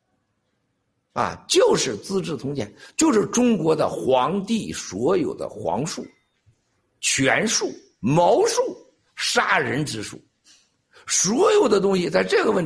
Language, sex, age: Chinese, male, 60-79